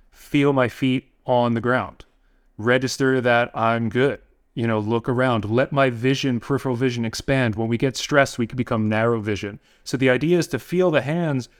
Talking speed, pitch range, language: 190 wpm, 115-140 Hz, English